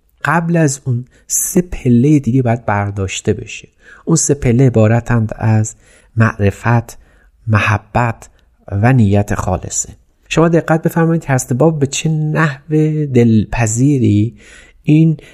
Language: Persian